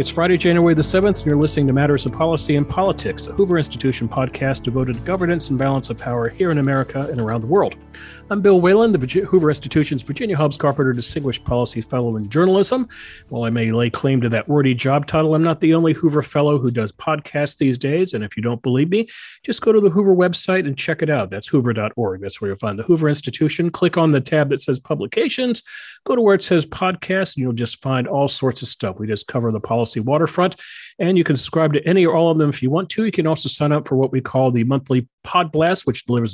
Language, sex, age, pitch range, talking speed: English, male, 40-59, 120-160 Hz, 245 wpm